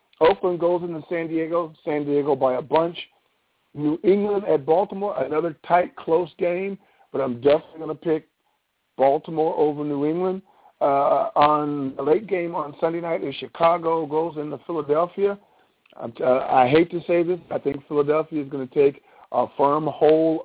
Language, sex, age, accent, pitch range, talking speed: English, male, 50-69, American, 140-170 Hz, 165 wpm